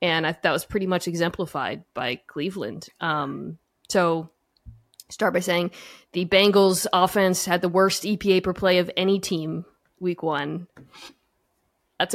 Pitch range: 170-210 Hz